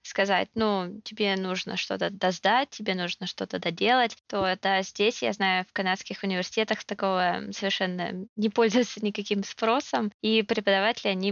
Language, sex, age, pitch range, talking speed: Russian, female, 20-39, 185-215 Hz, 145 wpm